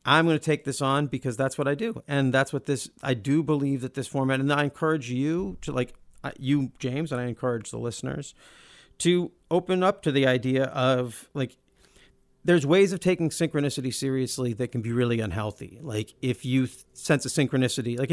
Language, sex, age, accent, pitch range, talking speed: English, male, 40-59, American, 120-145 Hz, 200 wpm